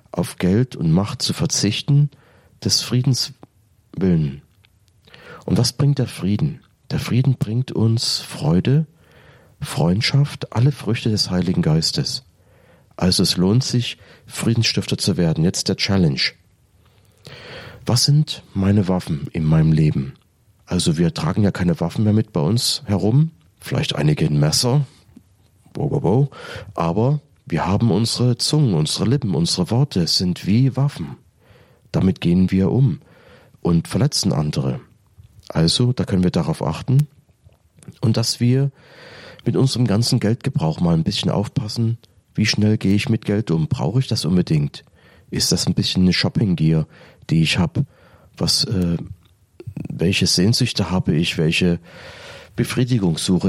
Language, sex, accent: German, male, German